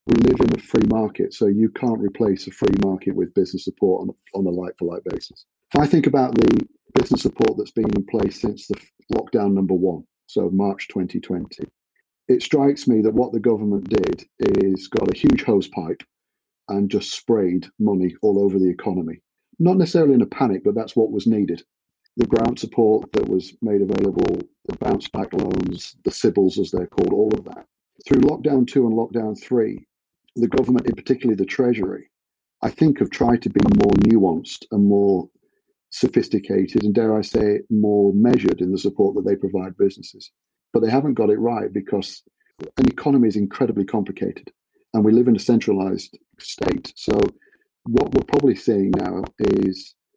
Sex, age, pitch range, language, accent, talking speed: male, 40-59, 100-125 Hz, English, British, 185 wpm